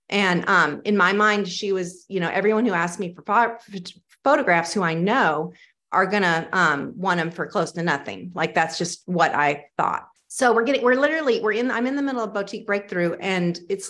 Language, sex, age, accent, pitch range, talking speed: English, female, 30-49, American, 175-215 Hz, 215 wpm